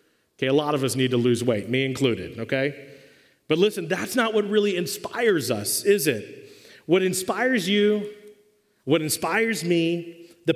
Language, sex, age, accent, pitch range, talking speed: English, male, 40-59, American, 140-190 Hz, 165 wpm